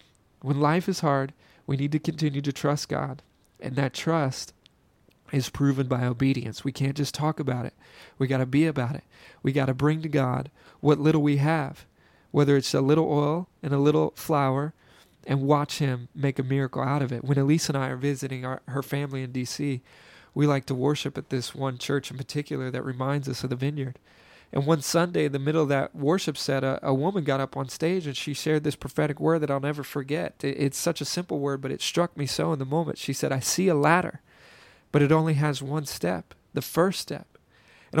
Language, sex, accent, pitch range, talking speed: English, male, American, 135-155 Hz, 225 wpm